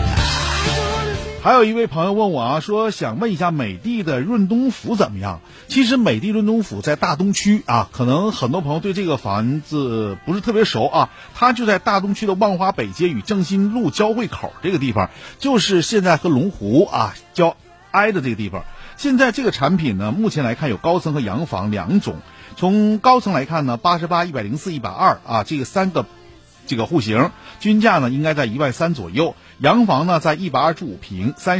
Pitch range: 125-200 Hz